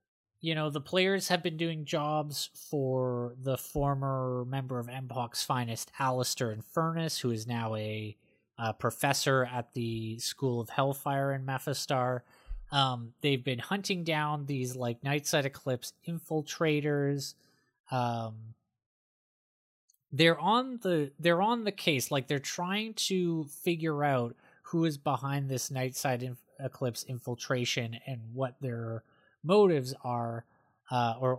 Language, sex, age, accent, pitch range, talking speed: English, male, 20-39, American, 120-150 Hz, 130 wpm